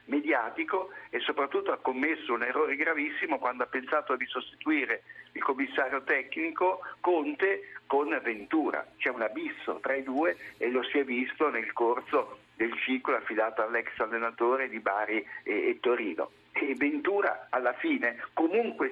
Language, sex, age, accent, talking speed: Italian, male, 60-79, native, 145 wpm